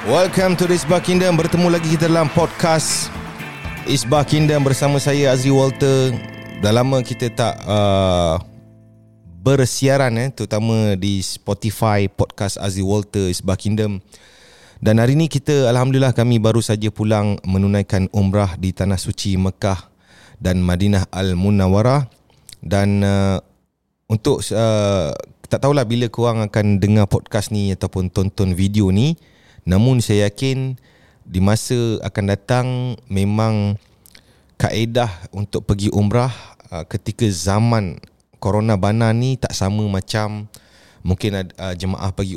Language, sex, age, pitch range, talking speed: Indonesian, male, 30-49, 100-125 Hz, 125 wpm